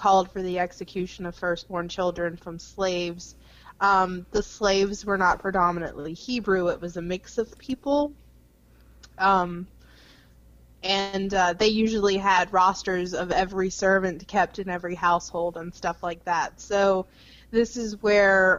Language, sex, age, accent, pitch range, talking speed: English, female, 20-39, American, 175-195 Hz, 140 wpm